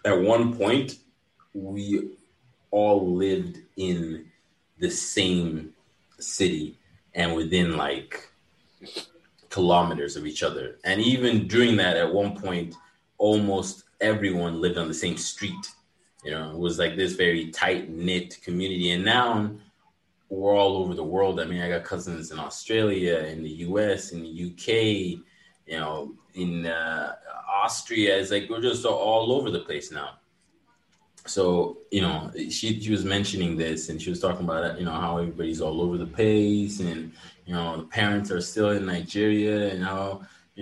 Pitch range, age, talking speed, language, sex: 85-105 Hz, 30-49, 160 wpm, English, male